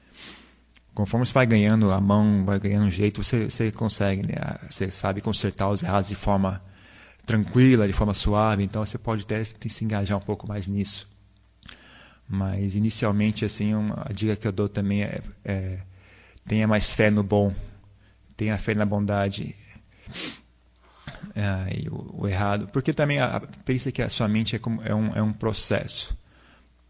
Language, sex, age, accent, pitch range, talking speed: Portuguese, male, 30-49, Brazilian, 100-120 Hz, 165 wpm